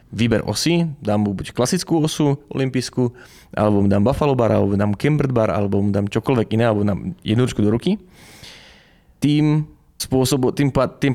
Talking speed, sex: 130 wpm, male